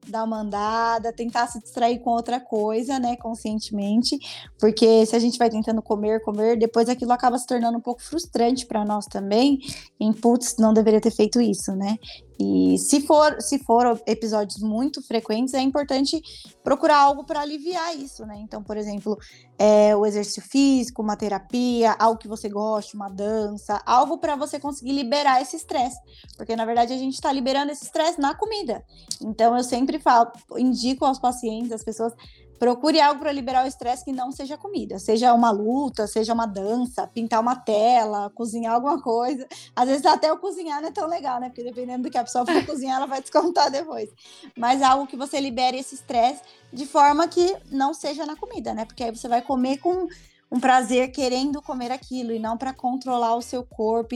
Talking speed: 195 wpm